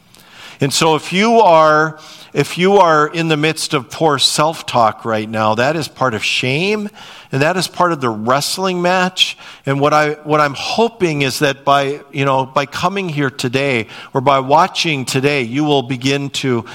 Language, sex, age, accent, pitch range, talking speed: English, male, 50-69, American, 125-165 Hz, 185 wpm